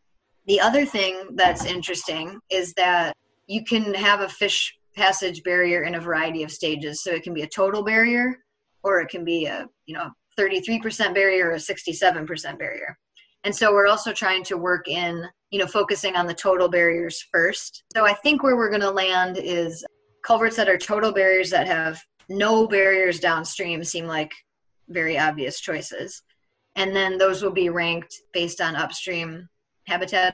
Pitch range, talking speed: 170-200 Hz, 175 wpm